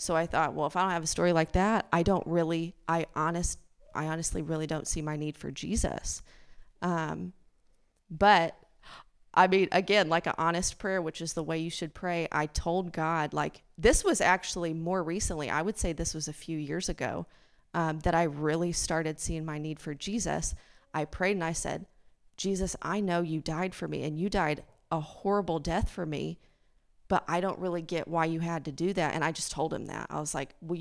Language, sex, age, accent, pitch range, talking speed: English, female, 30-49, American, 155-175 Hz, 215 wpm